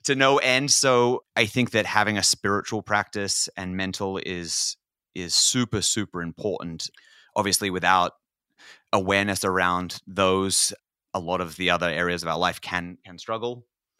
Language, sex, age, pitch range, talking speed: English, male, 30-49, 90-105 Hz, 150 wpm